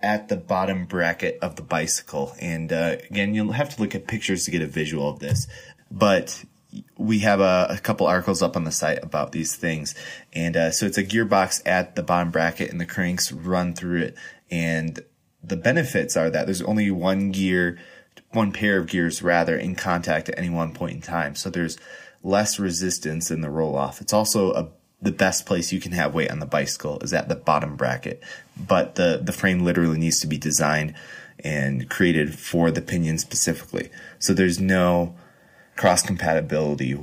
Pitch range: 85-100 Hz